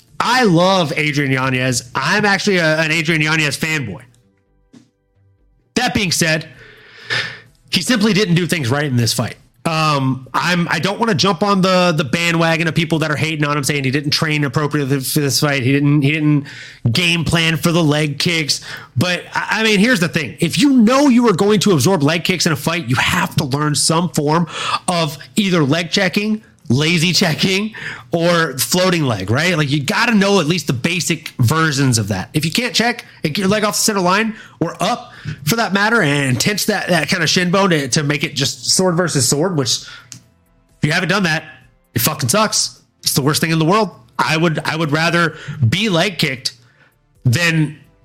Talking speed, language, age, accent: 200 wpm, English, 30-49, American